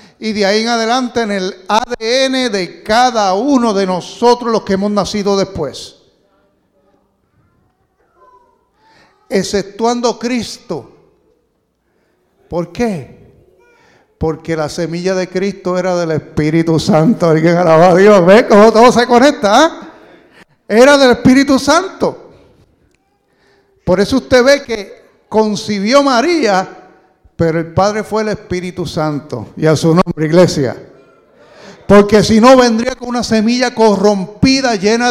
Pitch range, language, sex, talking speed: 175-240 Hz, English, male, 120 wpm